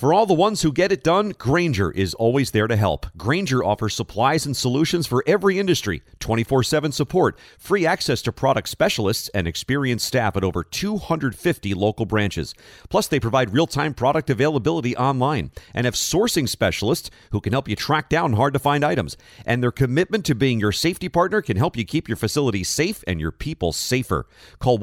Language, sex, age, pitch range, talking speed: English, male, 40-59, 100-145 Hz, 195 wpm